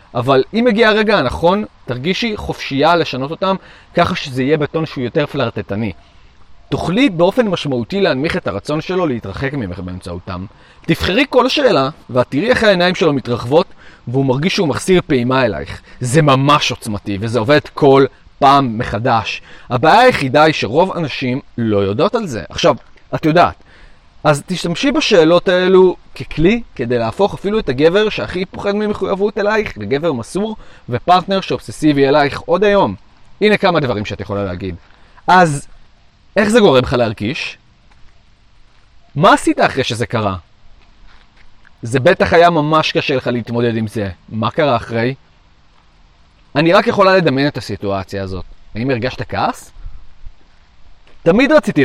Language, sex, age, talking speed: Arabic, male, 30-49, 140 wpm